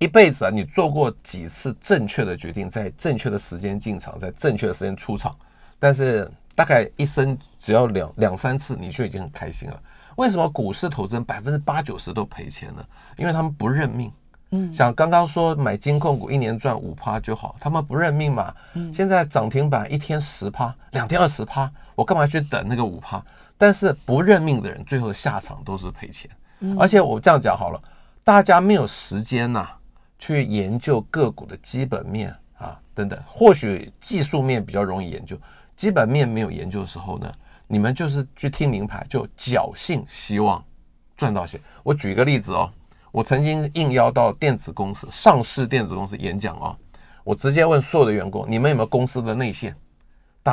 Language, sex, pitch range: Chinese, male, 105-145 Hz